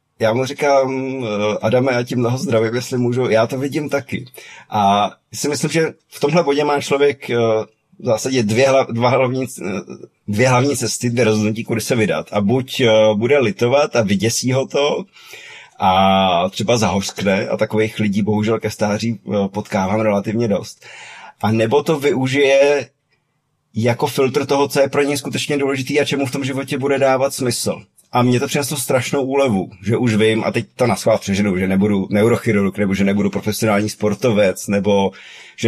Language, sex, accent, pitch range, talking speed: Czech, male, native, 105-130 Hz, 170 wpm